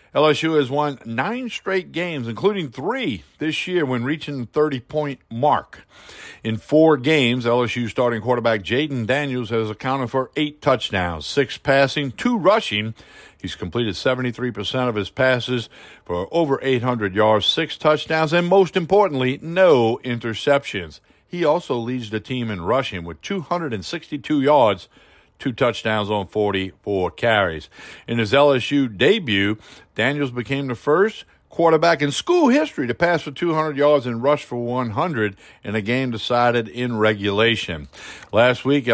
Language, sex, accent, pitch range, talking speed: English, male, American, 110-145 Hz, 145 wpm